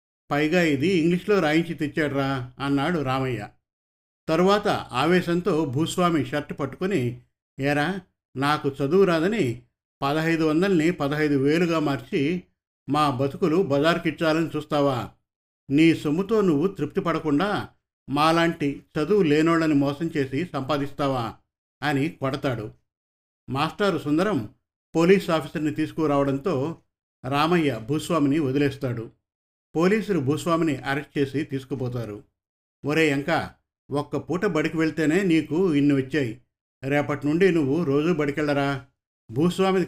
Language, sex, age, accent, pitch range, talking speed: Telugu, male, 50-69, native, 135-165 Hz, 100 wpm